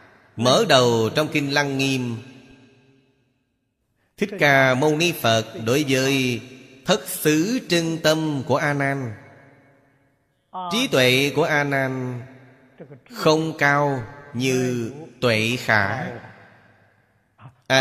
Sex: male